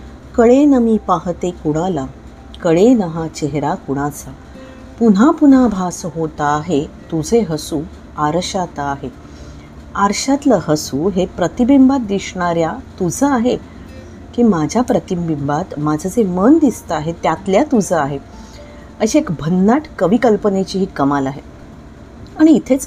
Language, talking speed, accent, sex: Marathi, 120 wpm, native, female